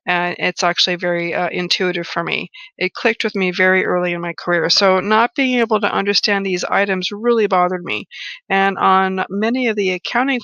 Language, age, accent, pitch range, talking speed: English, 50-69, American, 180-225 Hz, 195 wpm